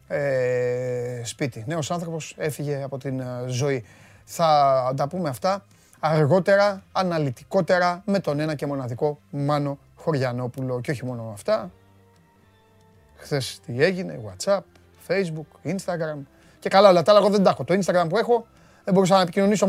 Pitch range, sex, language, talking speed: 145-215 Hz, male, Greek, 130 wpm